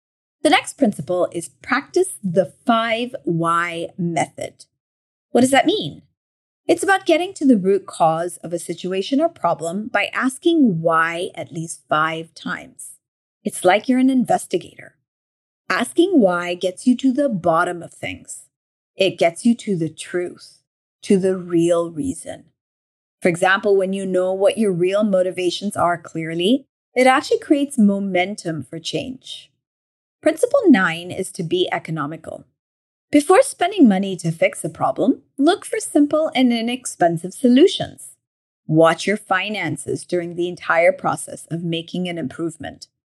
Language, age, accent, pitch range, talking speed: English, 30-49, American, 170-260 Hz, 140 wpm